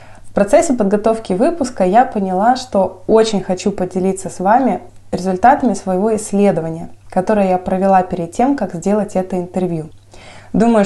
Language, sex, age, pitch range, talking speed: Russian, female, 20-39, 180-220 Hz, 140 wpm